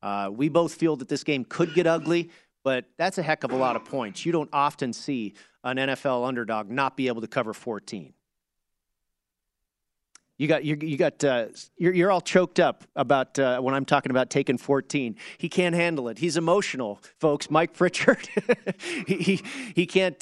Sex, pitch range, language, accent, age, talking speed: male, 120-150 Hz, English, American, 40-59, 190 wpm